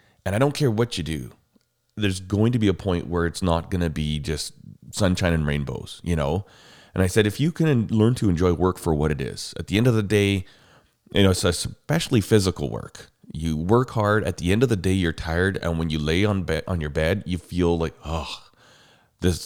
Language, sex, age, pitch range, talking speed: English, male, 30-49, 80-110 Hz, 235 wpm